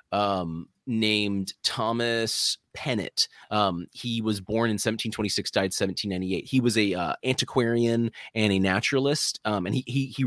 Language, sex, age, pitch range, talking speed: English, male, 30-49, 95-125 Hz, 145 wpm